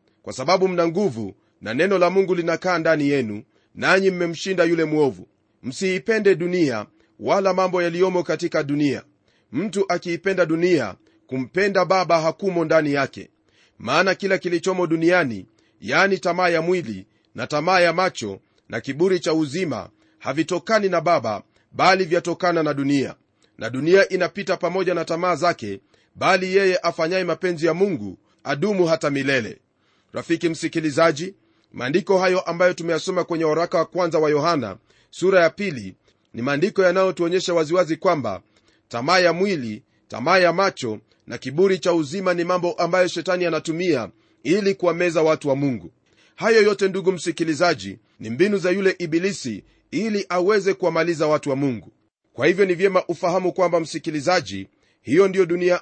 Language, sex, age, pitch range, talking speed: Swahili, male, 40-59, 145-185 Hz, 145 wpm